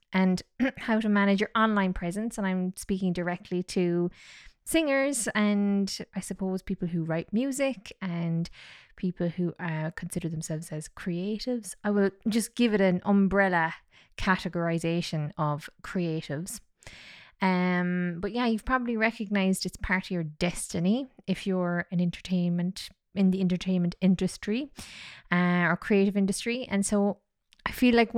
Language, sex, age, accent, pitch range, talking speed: English, female, 20-39, Irish, 175-220 Hz, 140 wpm